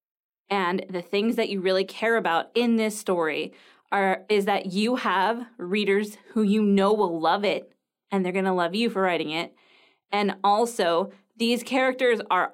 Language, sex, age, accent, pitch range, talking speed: English, female, 20-39, American, 185-230 Hz, 175 wpm